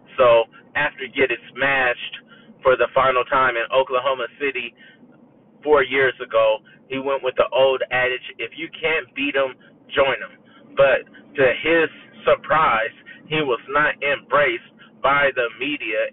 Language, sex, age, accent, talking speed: English, male, 30-49, American, 140 wpm